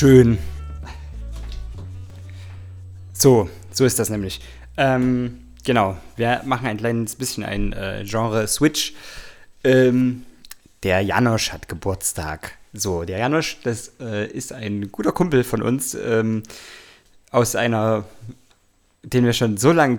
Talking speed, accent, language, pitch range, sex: 120 wpm, German, German, 105-125 Hz, male